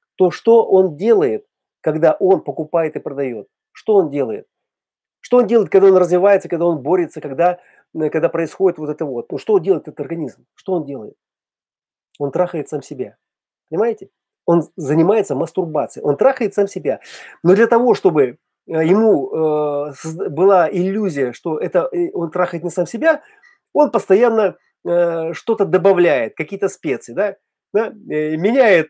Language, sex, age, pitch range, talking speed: Russian, male, 30-49, 170-235 Hz, 140 wpm